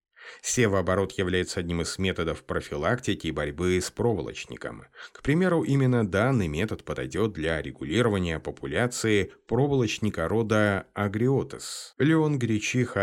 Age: 30-49